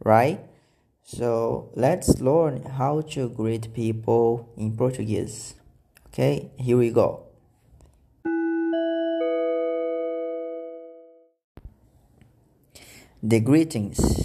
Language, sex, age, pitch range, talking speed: English, male, 20-39, 115-145 Hz, 65 wpm